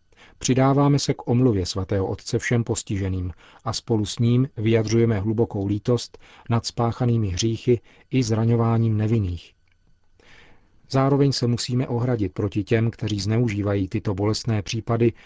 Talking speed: 125 wpm